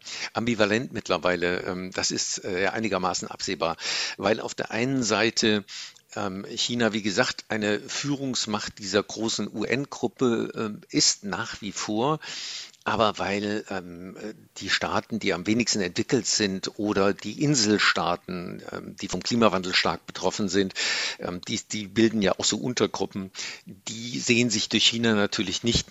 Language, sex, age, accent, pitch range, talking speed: German, male, 60-79, German, 100-120 Hz, 130 wpm